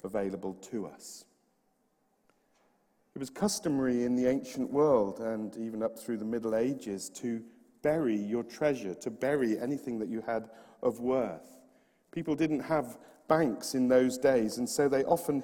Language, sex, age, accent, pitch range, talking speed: English, male, 50-69, British, 110-135 Hz, 155 wpm